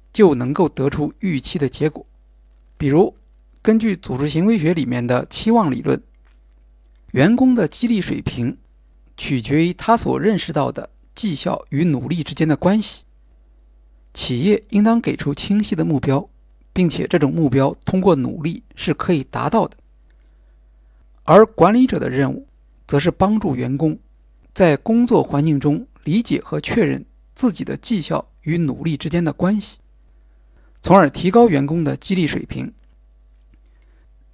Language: Chinese